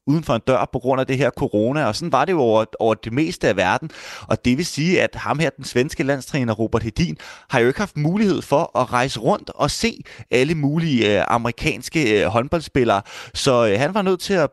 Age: 30-49